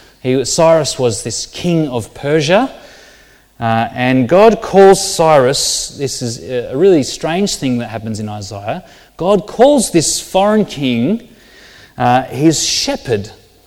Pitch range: 115-170 Hz